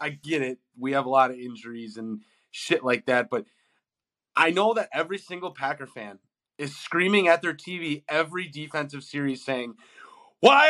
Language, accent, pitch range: English, American, 140-225 Hz